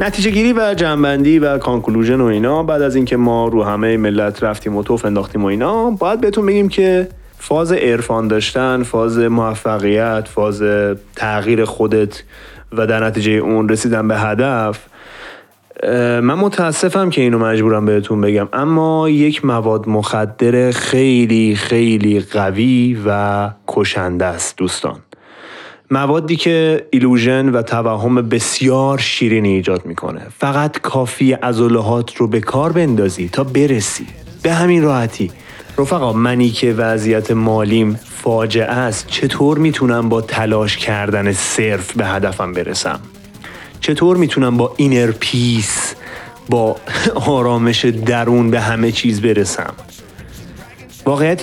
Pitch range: 110-135 Hz